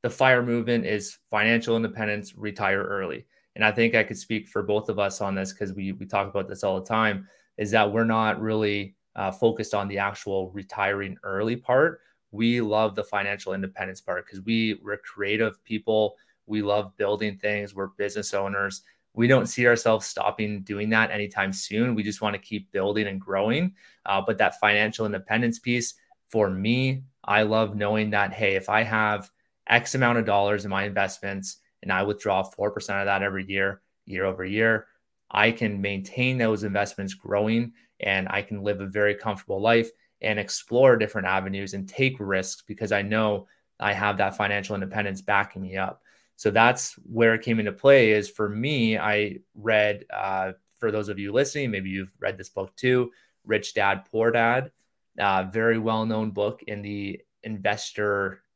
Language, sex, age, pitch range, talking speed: English, male, 20-39, 100-110 Hz, 180 wpm